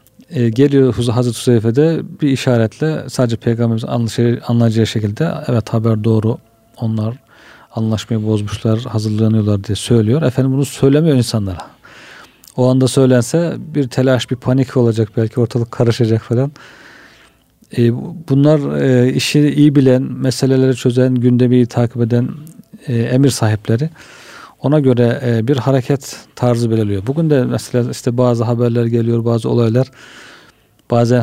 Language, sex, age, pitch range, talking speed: Turkish, male, 40-59, 115-135 Hz, 125 wpm